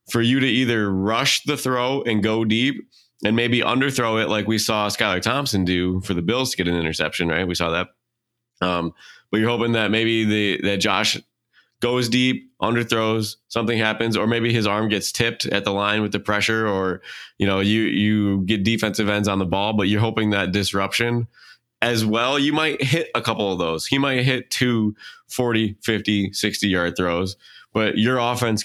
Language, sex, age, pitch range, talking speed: English, male, 20-39, 95-115 Hz, 195 wpm